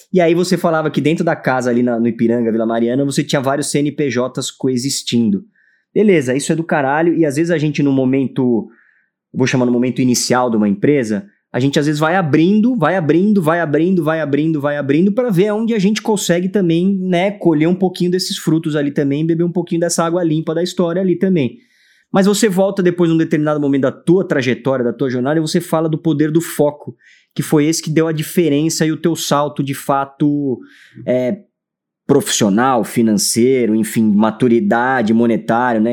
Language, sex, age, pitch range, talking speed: Portuguese, male, 20-39, 125-175 Hz, 200 wpm